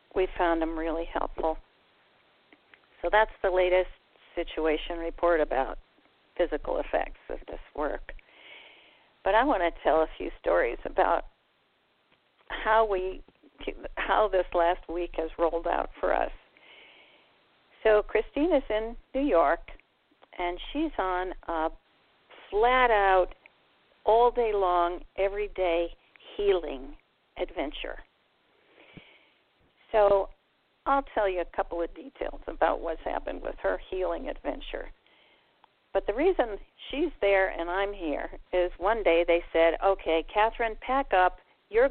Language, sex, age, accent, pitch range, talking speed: English, female, 50-69, American, 175-225 Hz, 120 wpm